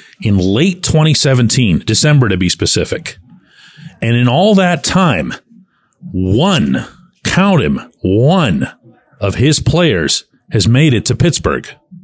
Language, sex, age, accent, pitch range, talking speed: English, male, 40-59, American, 115-185 Hz, 120 wpm